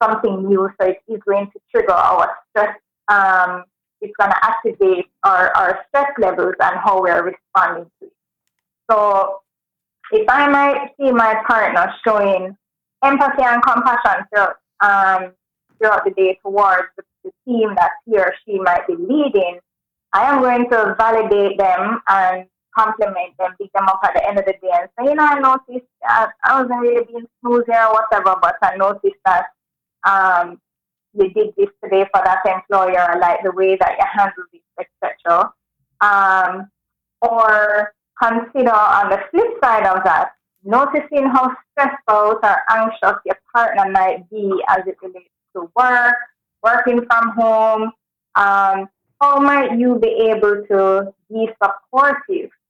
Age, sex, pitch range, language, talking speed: 20-39, female, 190-250 Hz, English, 160 wpm